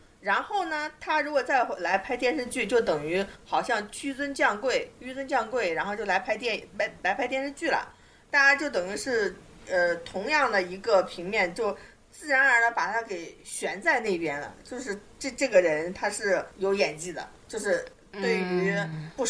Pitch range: 180-250 Hz